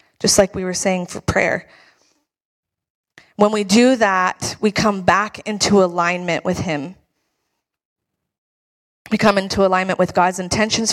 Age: 20-39